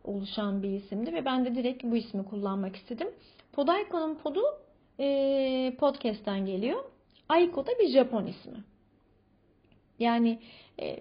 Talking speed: 125 wpm